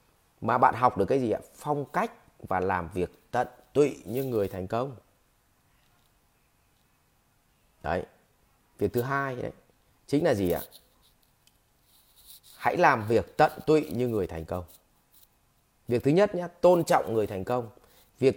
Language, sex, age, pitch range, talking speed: English, male, 30-49, 110-155 Hz, 150 wpm